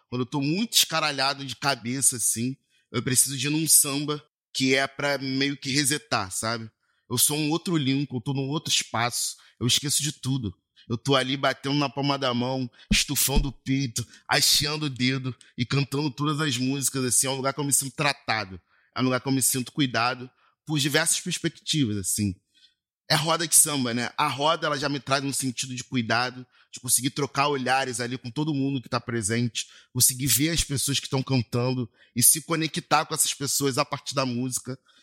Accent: Brazilian